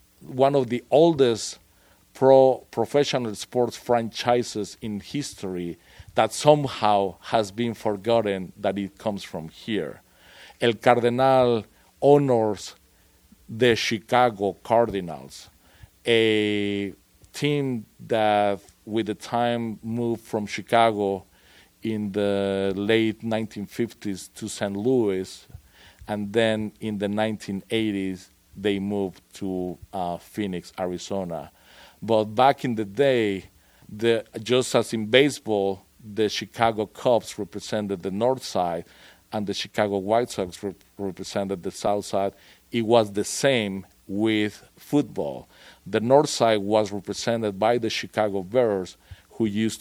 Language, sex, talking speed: English, male, 115 wpm